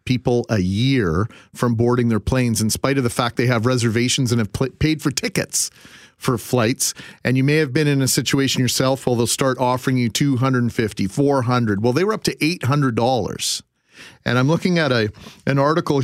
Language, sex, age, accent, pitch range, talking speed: English, male, 40-59, American, 120-145 Hz, 190 wpm